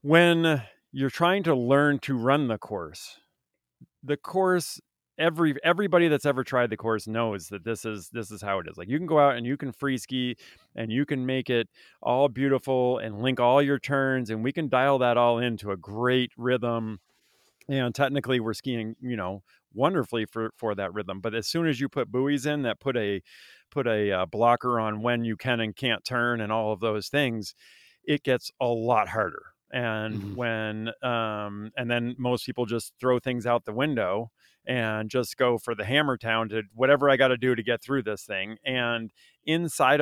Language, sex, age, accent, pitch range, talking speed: English, male, 40-59, American, 115-135 Hz, 200 wpm